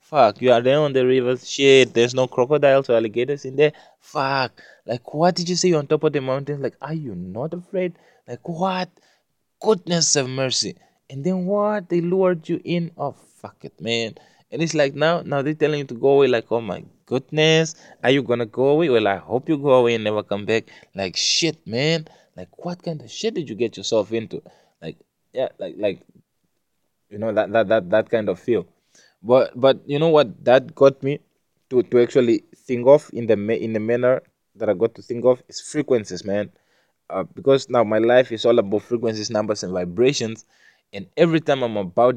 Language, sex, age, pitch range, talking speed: English, male, 20-39, 110-150 Hz, 210 wpm